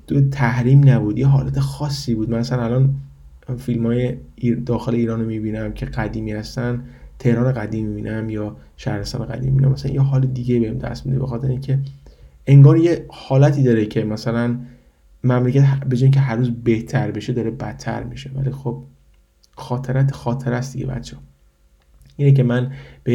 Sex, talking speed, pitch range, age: male, 160 wpm, 110-135 Hz, 20-39